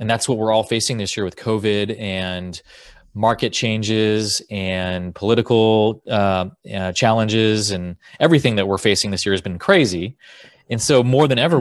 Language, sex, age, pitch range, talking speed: English, male, 30-49, 100-125 Hz, 170 wpm